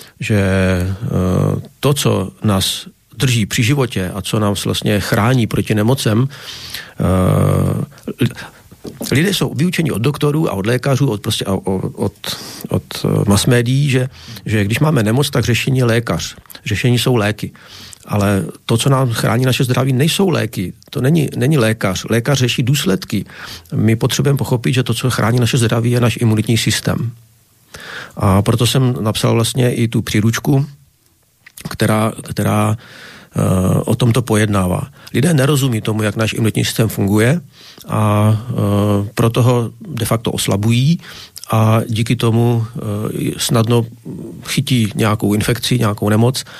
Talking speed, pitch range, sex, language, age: 135 wpm, 105-130 Hz, male, Slovak, 40-59